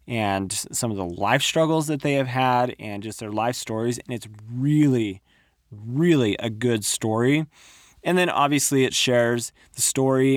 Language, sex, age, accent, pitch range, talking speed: English, male, 30-49, American, 115-145 Hz, 170 wpm